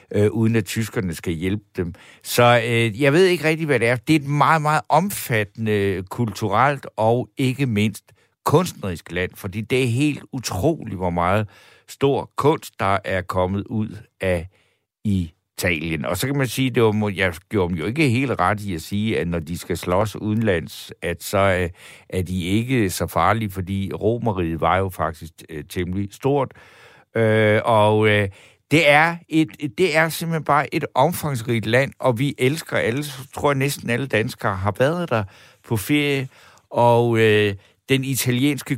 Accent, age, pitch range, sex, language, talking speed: native, 60-79, 95-130 Hz, male, Danish, 175 wpm